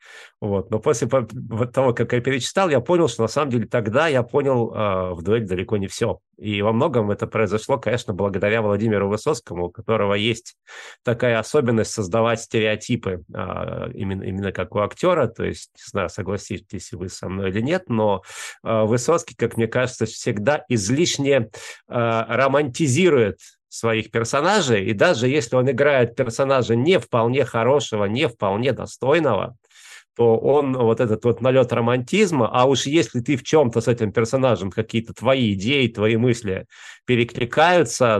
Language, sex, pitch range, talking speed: Russian, male, 110-130 Hz, 155 wpm